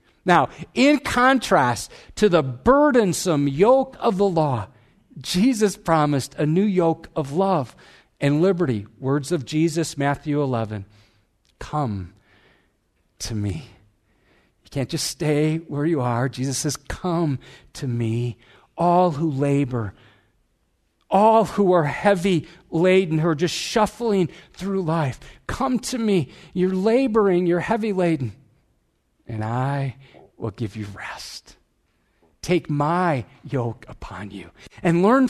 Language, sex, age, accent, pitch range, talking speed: English, male, 50-69, American, 115-180 Hz, 125 wpm